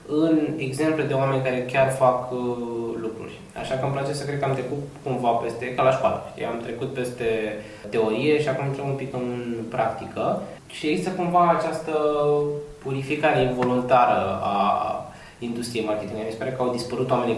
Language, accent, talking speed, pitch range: Romanian, native, 175 wpm, 115-150 Hz